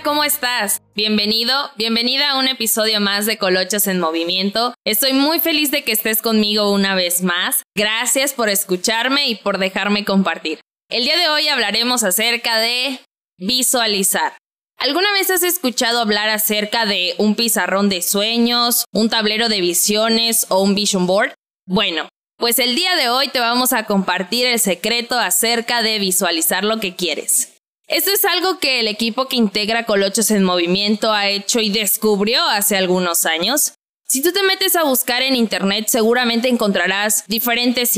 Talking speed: 165 wpm